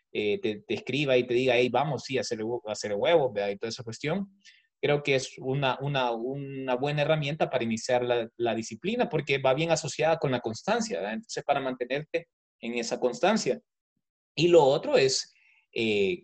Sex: male